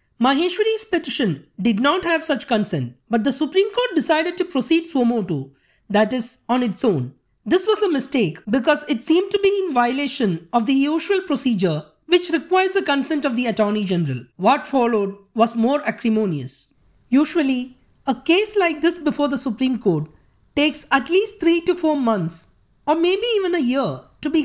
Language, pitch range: English, 215-320 Hz